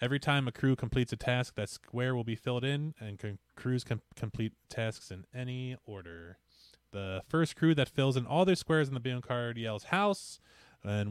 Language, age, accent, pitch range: English, 20-39, American, 100-130 Hz